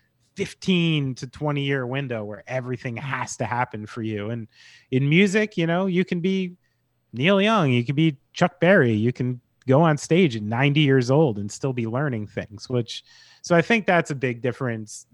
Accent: American